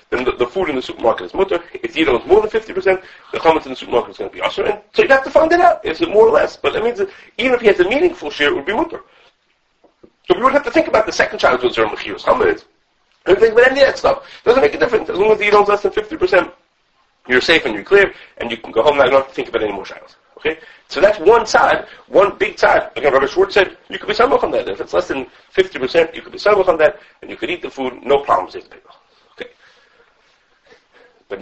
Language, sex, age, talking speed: English, male, 40-59, 275 wpm